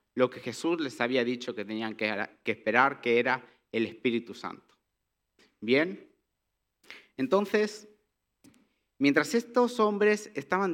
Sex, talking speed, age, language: male, 125 wpm, 50-69, Spanish